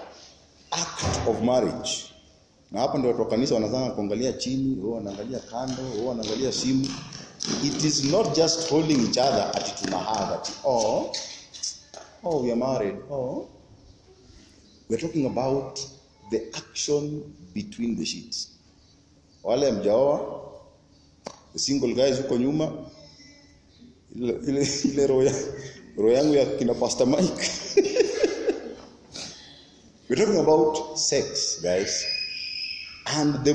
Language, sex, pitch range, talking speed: English, male, 115-165 Hz, 75 wpm